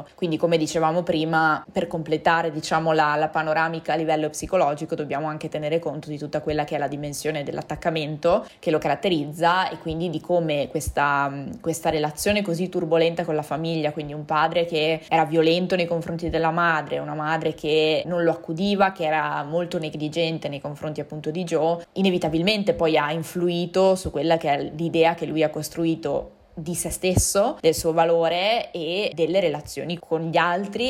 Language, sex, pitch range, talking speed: Italian, female, 155-175 Hz, 175 wpm